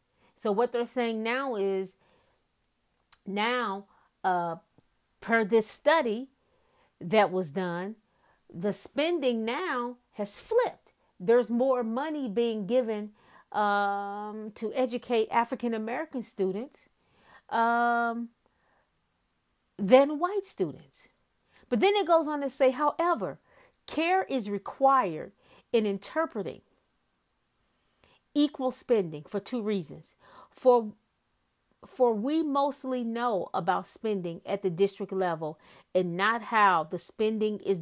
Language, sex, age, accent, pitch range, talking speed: English, female, 40-59, American, 195-255 Hz, 110 wpm